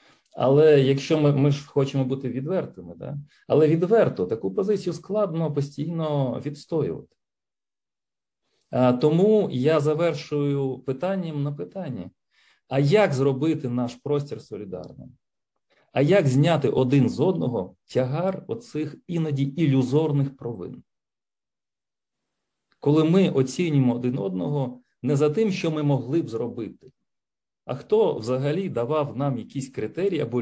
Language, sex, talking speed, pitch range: Ukrainian, male, 120 wpm, 135-170 Hz